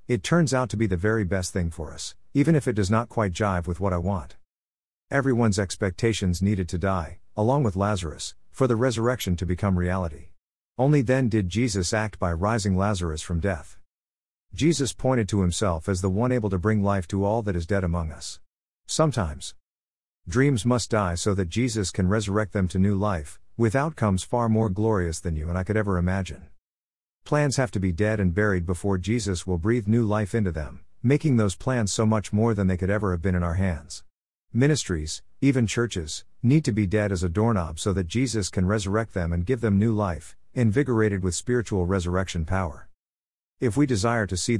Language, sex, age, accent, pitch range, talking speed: English, male, 50-69, American, 90-115 Hz, 200 wpm